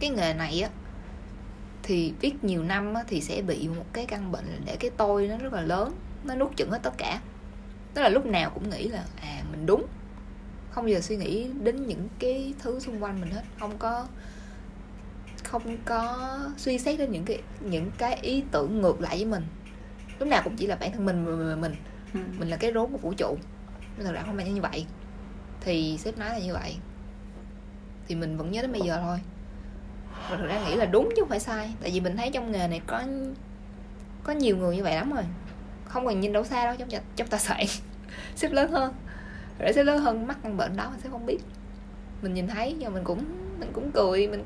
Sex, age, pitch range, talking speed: female, 20-39, 170-240 Hz, 220 wpm